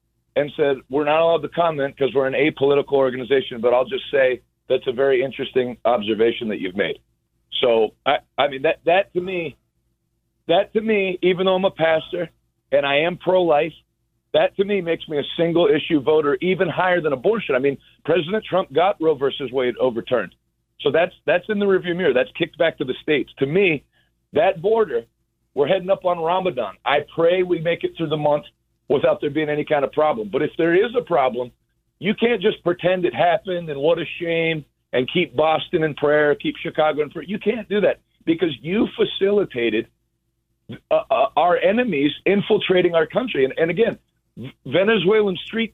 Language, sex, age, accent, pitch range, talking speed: English, male, 40-59, American, 145-195 Hz, 190 wpm